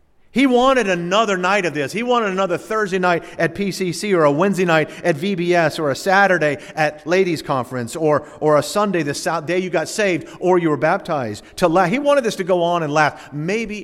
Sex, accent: male, American